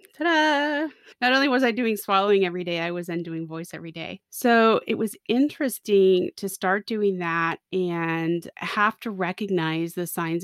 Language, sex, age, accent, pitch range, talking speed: English, female, 20-39, American, 170-210 Hz, 170 wpm